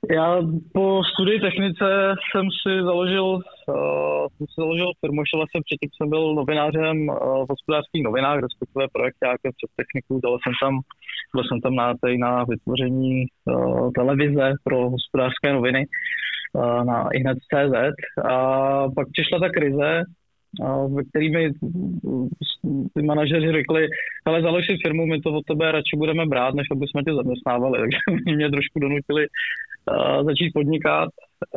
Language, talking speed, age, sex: Czech, 150 wpm, 20-39, male